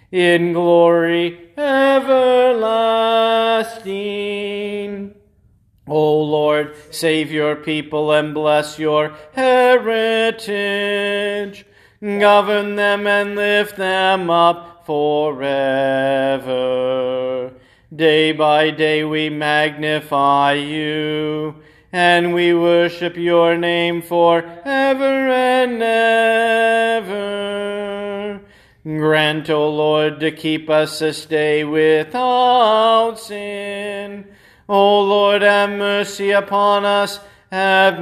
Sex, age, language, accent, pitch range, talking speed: male, 40-59, English, American, 150-205 Hz, 80 wpm